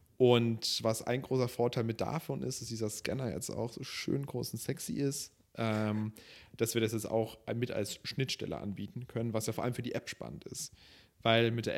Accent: German